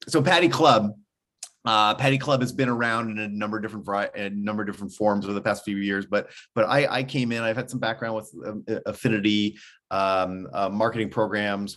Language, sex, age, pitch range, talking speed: English, male, 30-49, 95-115 Hz, 215 wpm